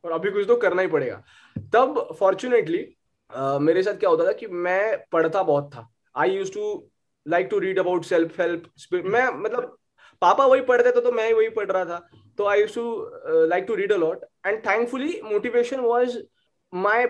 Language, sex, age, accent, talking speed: Hindi, male, 20-39, native, 170 wpm